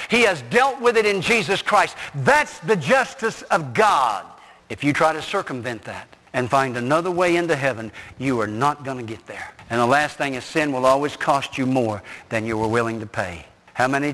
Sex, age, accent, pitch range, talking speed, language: male, 60-79, American, 125-165 Hz, 215 wpm, English